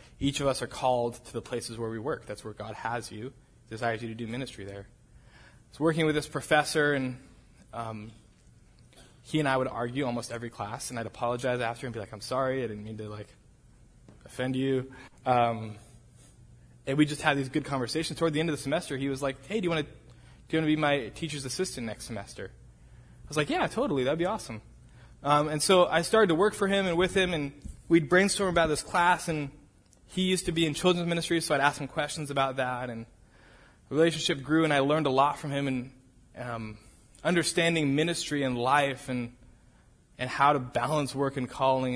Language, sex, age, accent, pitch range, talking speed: English, male, 20-39, American, 120-150 Hz, 215 wpm